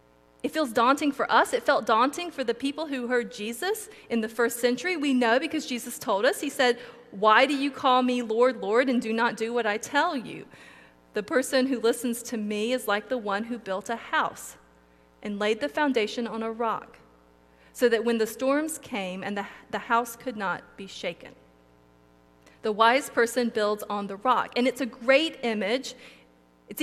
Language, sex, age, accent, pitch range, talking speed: English, female, 40-59, American, 190-255 Hz, 200 wpm